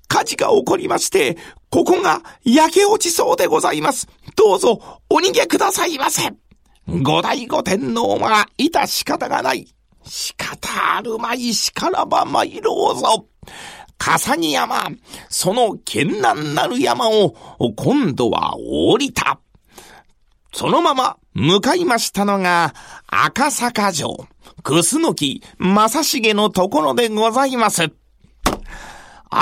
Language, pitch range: Japanese, 210-330 Hz